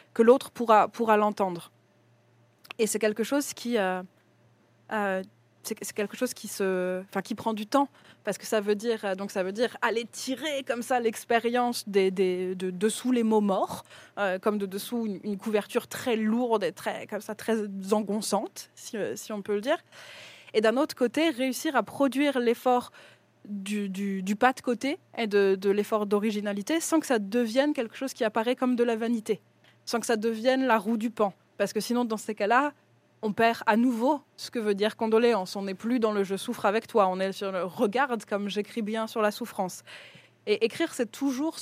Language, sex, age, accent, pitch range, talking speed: French, female, 20-39, French, 200-240 Hz, 215 wpm